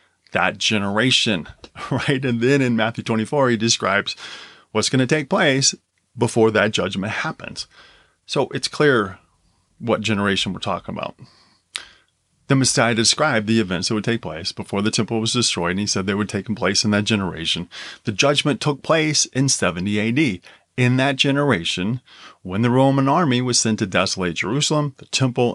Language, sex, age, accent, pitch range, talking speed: English, male, 30-49, American, 105-135 Hz, 170 wpm